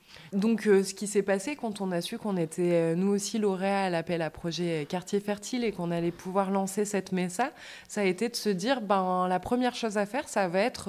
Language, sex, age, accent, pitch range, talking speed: French, female, 20-39, French, 175-215 Hz, 240 wpm